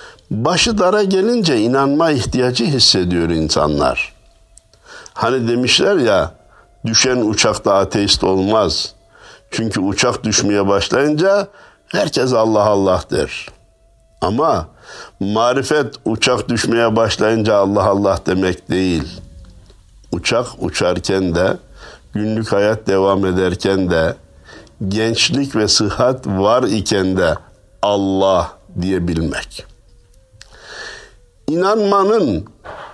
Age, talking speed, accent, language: 60-79, 85 wpm, native, Turkish